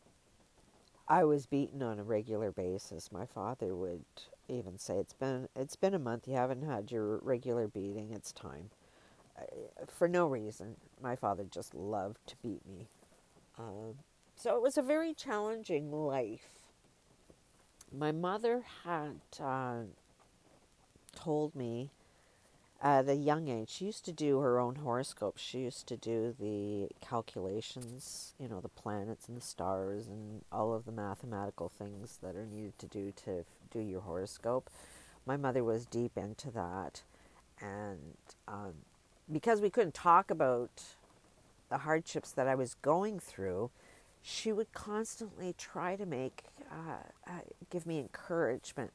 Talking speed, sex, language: 150 wpm, female, English